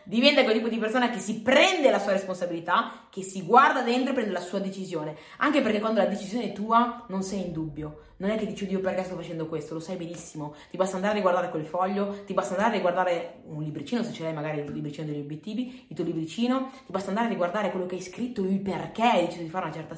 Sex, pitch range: female, 160-235 Hz